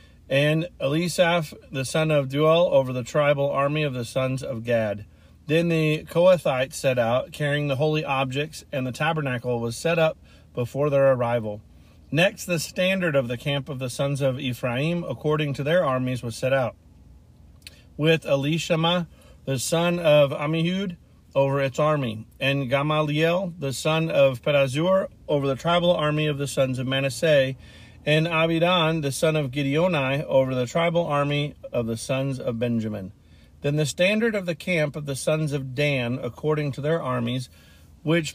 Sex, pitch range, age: male, 130-160 Hz, 40-59